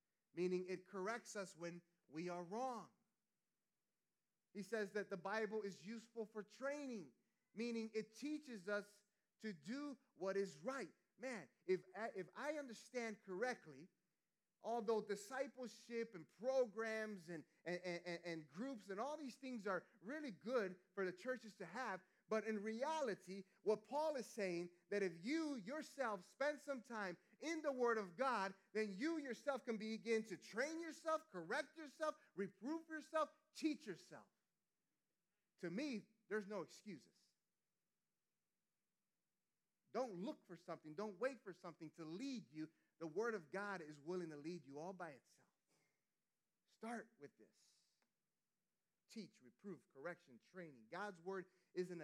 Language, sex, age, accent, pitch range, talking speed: English, male, 30-49, American, 180-235 Hz, 145 wpm